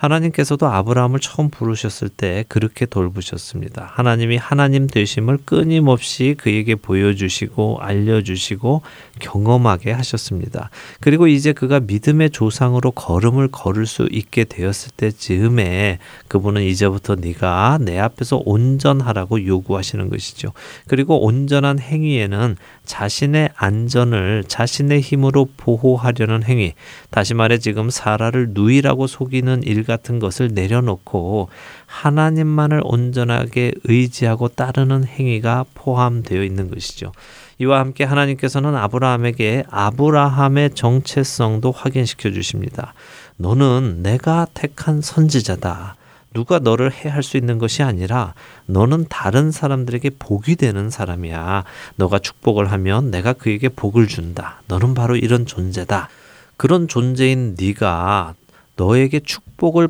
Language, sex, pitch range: Korean, male, 100-135 Hz